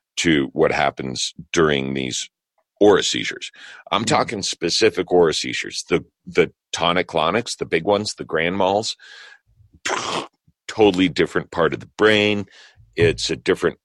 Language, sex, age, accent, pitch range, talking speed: English, male, 50-69, American, 75-100 Hz, 130 wpm